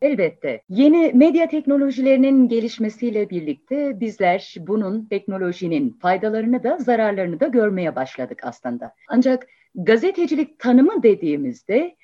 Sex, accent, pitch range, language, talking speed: female, native, 180-270 Hz, Turkish, 100 wpm